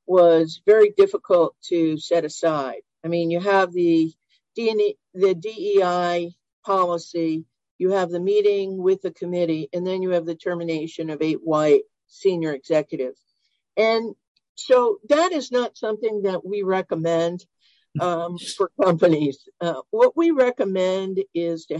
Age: 50-69